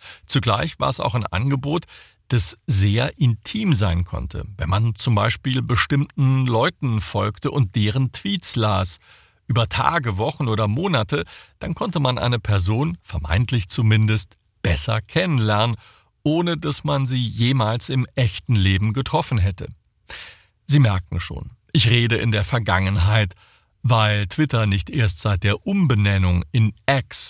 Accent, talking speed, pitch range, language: German, 140 wpm, 100-130 Hz, German